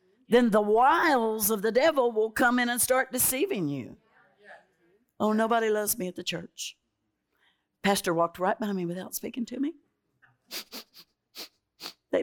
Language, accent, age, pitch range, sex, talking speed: English, American, 60-79, 135-220 Hz, female, 145 wpm